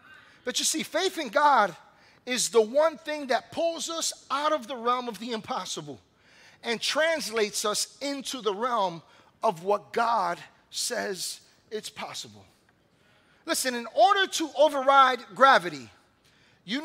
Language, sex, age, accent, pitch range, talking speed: English, male, 40-59, American, 230-315 Hz, 140 wpm